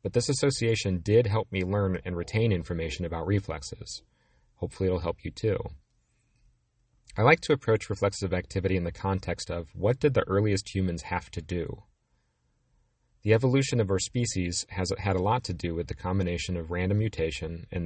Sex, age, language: male, 40-59, English